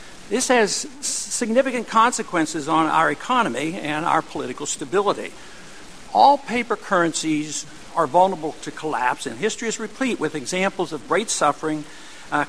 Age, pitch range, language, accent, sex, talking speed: 60-79, 160-220 Hz, English, American, male, 135 wpm